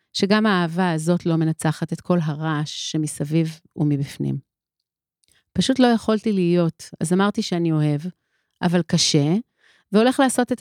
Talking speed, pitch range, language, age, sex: 130 wpm, 165-220 Hz, Hebrew, 30-49, female